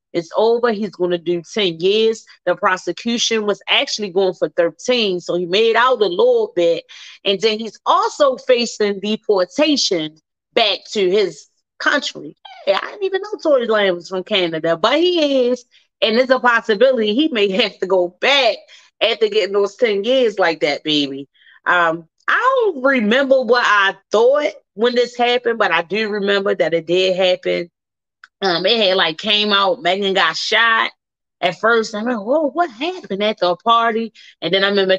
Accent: American